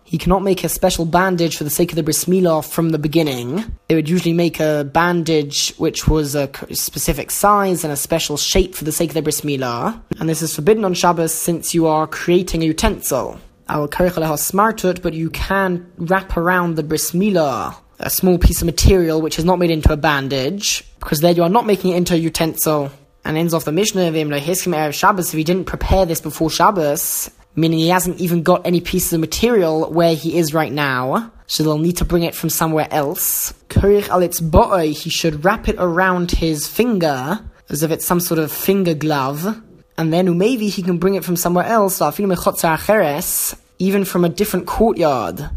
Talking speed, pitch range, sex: 195 wpm, 160-180 Hz, male